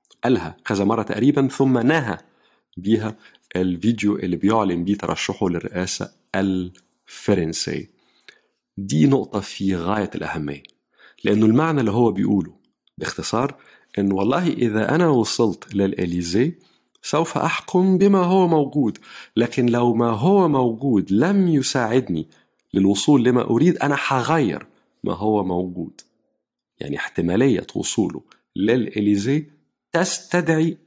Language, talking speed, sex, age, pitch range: Arabic, 110 wpm, male, 50-69, 100-145 Hz